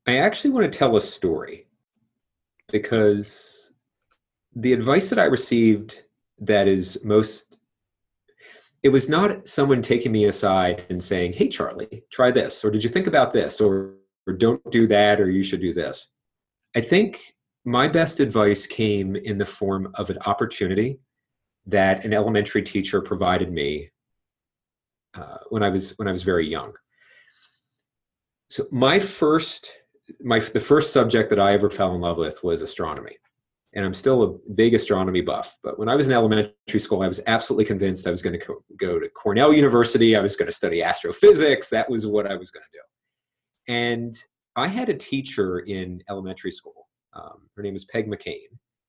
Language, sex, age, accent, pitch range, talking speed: English, male, 40-59, American, 100-140 Hz, 175 wpm